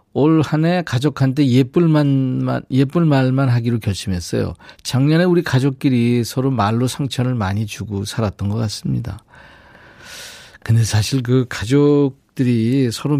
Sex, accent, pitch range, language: male, native, 115-155 Hz, Korean